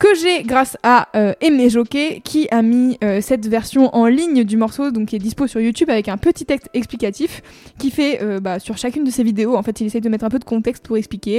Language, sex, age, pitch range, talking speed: French, female, 20-39, 225-275 Hz, 260 wpm